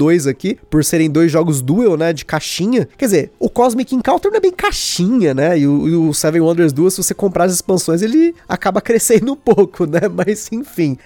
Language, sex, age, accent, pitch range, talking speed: Portuguese, male, 20-39, Brazilian, 165-220 Hz, 215 wpm